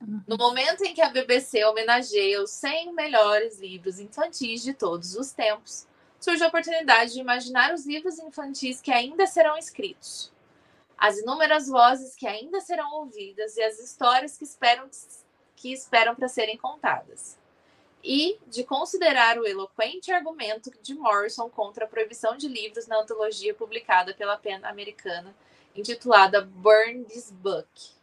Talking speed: 145 wpm